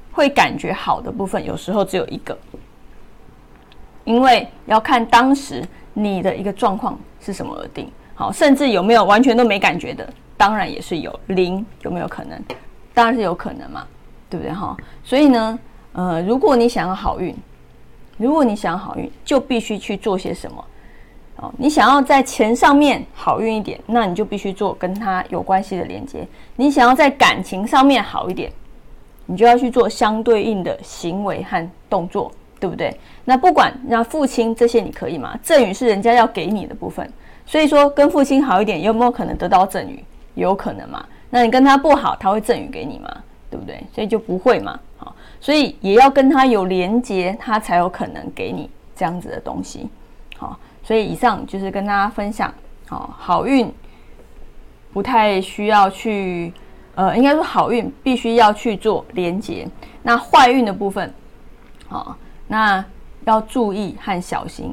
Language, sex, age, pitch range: Chinese, female, 20-39, 195-255 Hz